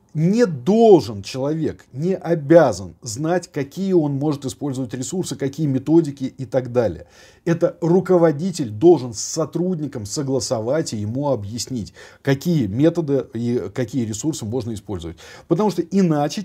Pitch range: 125-175 Hz